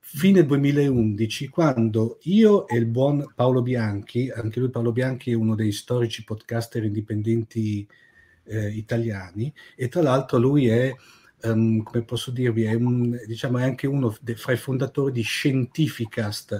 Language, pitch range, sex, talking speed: Italian, 115-140 Hz, male, 150 wpm